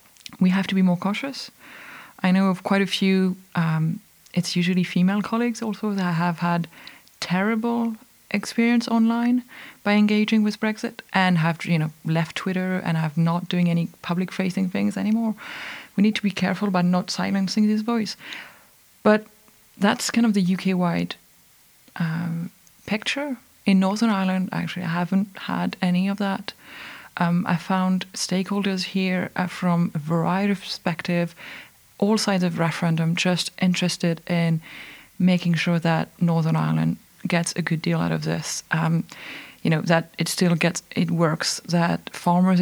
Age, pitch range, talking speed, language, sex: 30-49, 170-200 Hz, 155 wpm, English, female